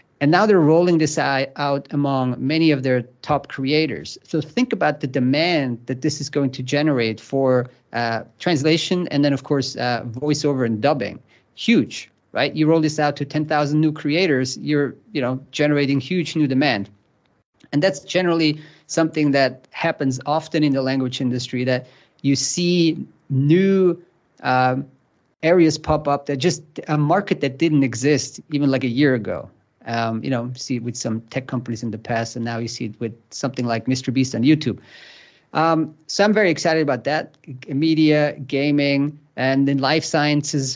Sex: male